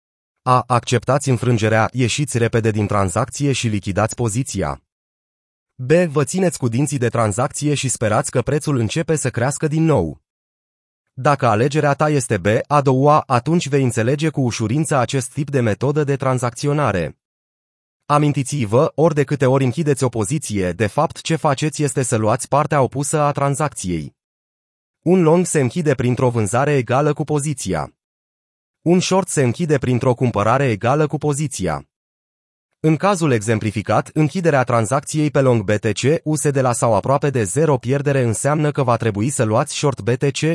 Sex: male